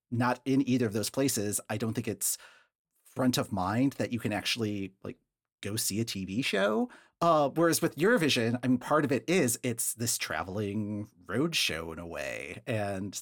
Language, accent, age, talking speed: English, American, 40-59, 190 wpm